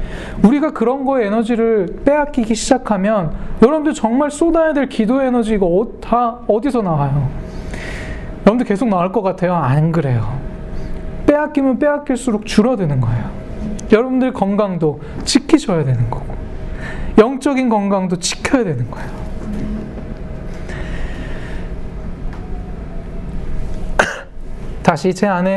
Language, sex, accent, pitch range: Korean, male, native, 160-230 Hz